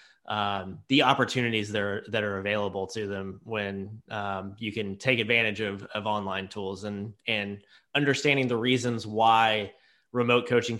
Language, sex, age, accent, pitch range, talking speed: English, male, 30-49, American, 105-125 Hz, 155 wpm